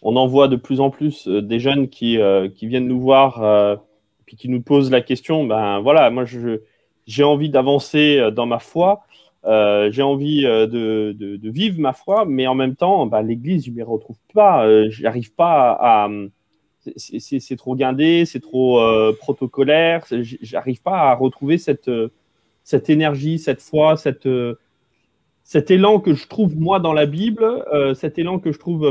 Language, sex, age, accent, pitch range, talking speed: French, male, 30-49, French, 125-160 Hz, 175 wpm